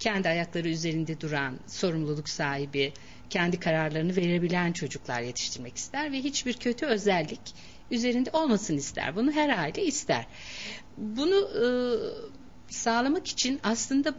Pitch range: 160-245 Hz